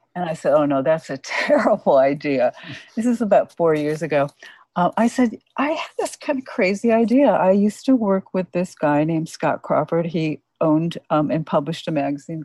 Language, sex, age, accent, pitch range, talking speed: English, female, 60-79, American, 160-210 Hz, 200 wpm